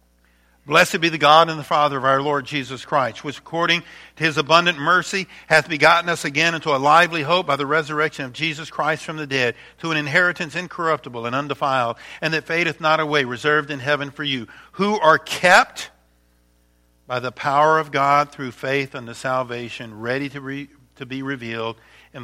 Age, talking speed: 50-69, 185 wpm